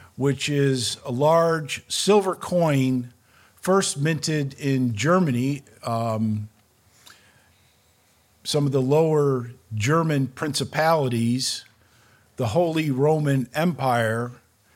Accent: American